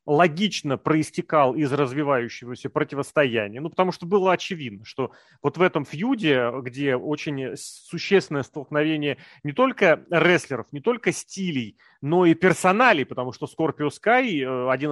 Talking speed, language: 135 wpm, Russian